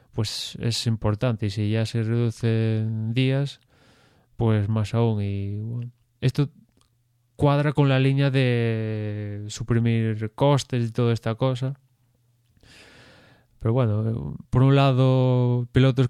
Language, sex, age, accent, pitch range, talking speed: Spanish, male, 20-39, Spanish, 110-130 Hz, 120 wpm